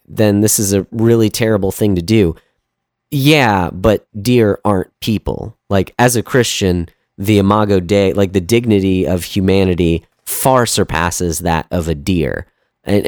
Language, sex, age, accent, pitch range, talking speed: English, male, 30-49, American, 90-110 Hz, 150 wpm